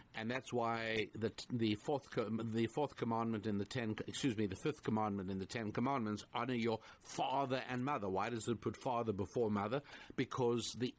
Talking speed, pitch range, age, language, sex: 190 wpm, 110-130 Hz, 60-79, English, male